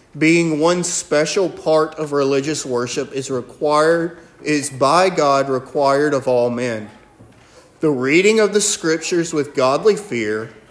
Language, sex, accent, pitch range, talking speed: English, male, American, 120-165 Hz, 135 wpm